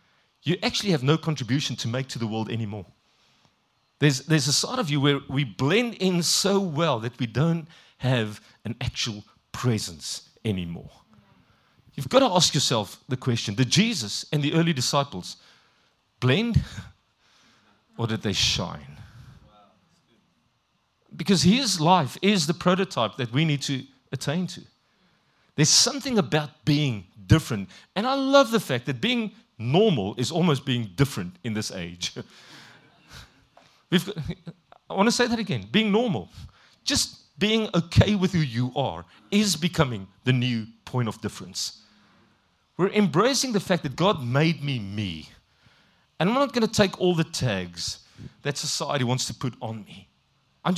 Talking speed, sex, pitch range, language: 150 wpm, male, 110-175 Hz, English